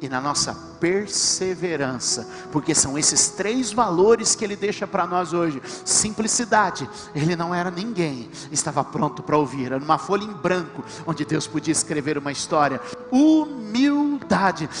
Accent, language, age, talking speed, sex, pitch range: Brazilian, Portuguese, 50-69, 145 wpm, male, 155-220 Hz